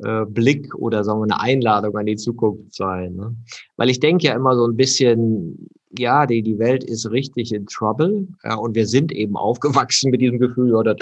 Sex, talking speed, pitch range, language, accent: male, 205 wpm, 100-120 Hz, German, German